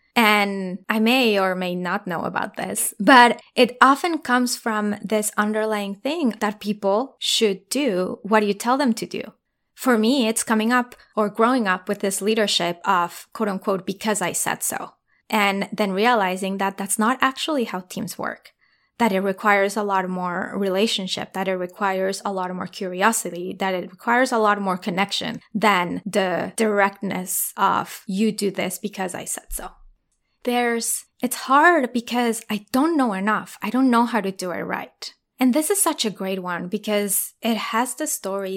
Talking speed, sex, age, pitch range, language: 180 wpm, female, 20-39, 190-235 Hz, English